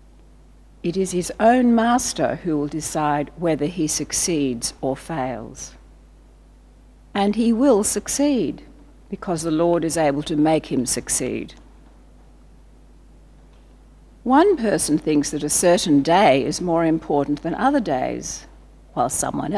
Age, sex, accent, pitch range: 60-79, female, Australian, 145-200 Hz